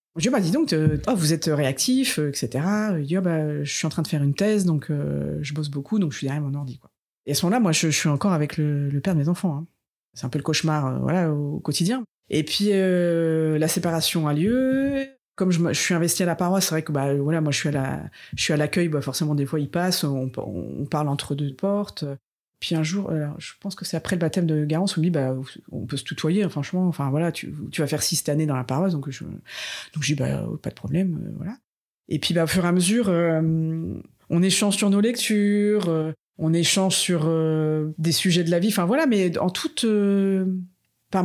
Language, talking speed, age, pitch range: French, 255 wpm, 30-49, 150-190 Hz